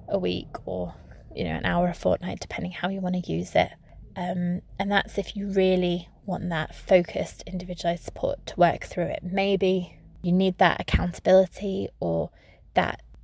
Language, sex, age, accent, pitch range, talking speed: English, female, 20-39, British, 175-200 Hz, 170 wpm